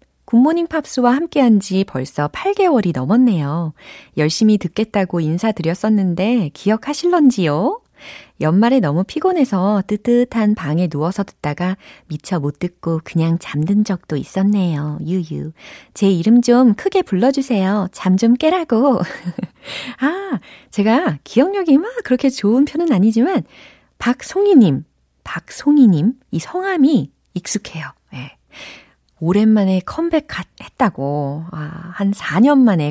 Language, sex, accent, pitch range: Korean, female, native, 170-265 Hz